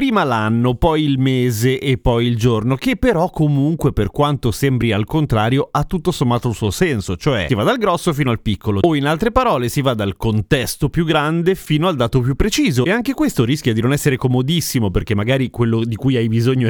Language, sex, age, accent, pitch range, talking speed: Italian, male, 30-49, native, 120-160 Hz, 220 wpm